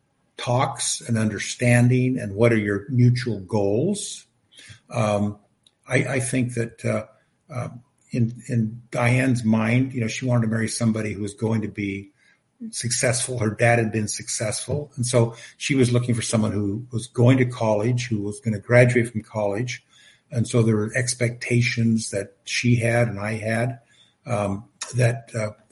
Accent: American